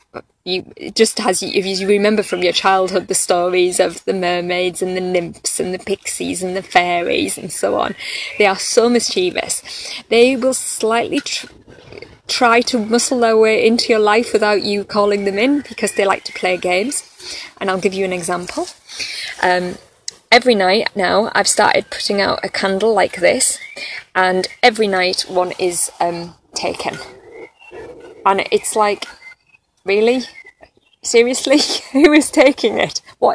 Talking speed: 155 wpm